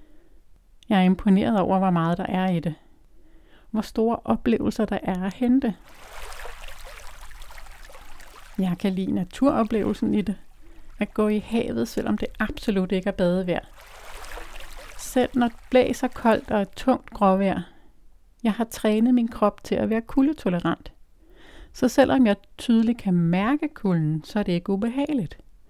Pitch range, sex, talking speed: 190-240 Hz, female, 145 wpm